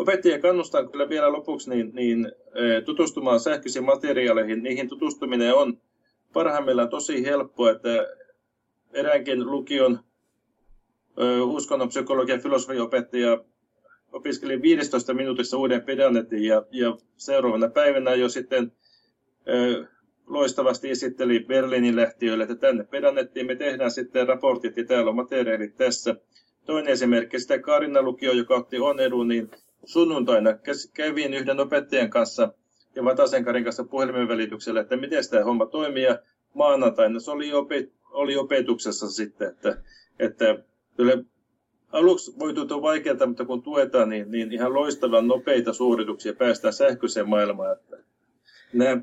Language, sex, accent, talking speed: Finnish, male, native, 125 wpm